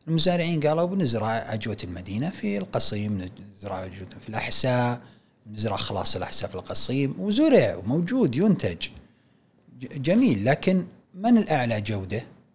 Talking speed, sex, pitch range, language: 110 wpm, male, 110-150 Hz, Arabic